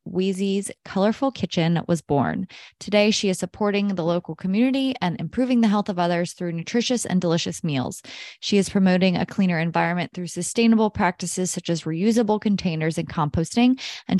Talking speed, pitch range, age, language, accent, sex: 165 wpm, 175-220 Hz, 20-39, English, American, female